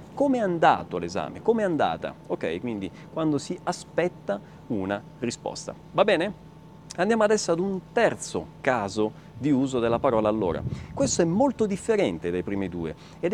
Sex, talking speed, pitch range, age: male, 155 wpm, 125-205 Hz, 40-59